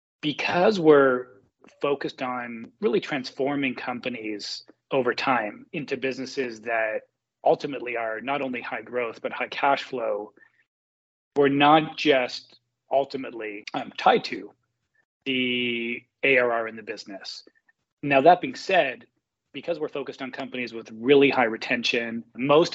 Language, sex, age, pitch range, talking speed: English, male, 30-49, 120-145 Hz, 125 wpm